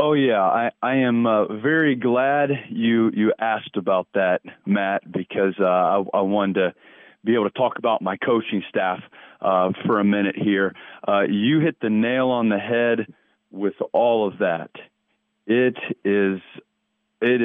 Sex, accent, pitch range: male, American, 100-125 Hz